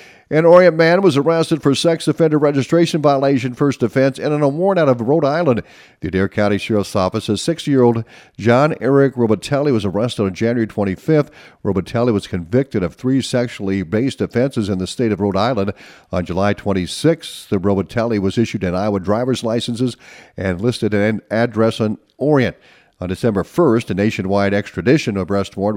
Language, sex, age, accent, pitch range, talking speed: English, male, 50-69, American, 100-135 Hz, 180 wpm